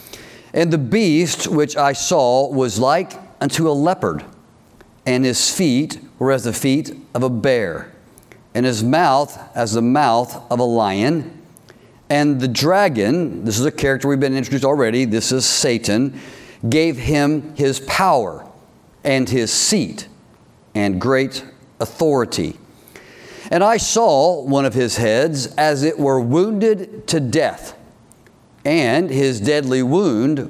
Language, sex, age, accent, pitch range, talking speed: English, male, 50-69, American, 125-170 Hz, 140 wpm